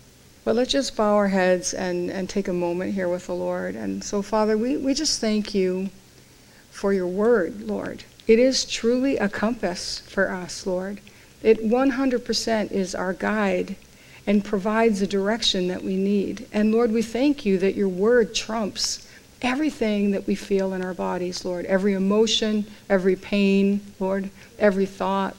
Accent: American